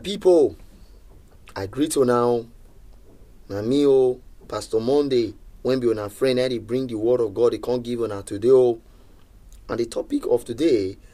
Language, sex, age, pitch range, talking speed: English, male, 30-49, 95-140 Hz, 160 wpm